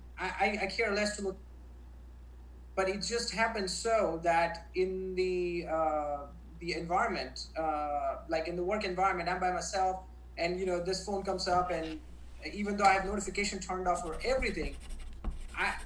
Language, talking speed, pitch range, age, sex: English, 165 wpm, 170-205 Hz, 30-49, male